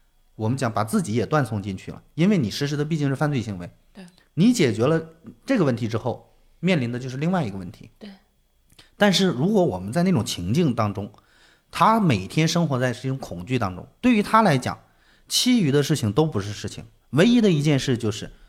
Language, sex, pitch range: Chinese, male, 105-155 Hz